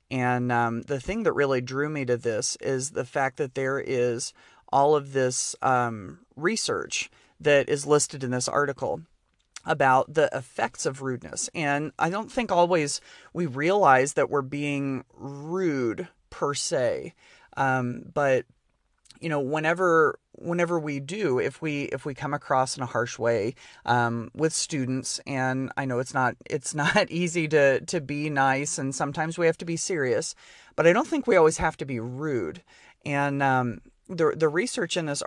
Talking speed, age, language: 175 wpm, 30-49, English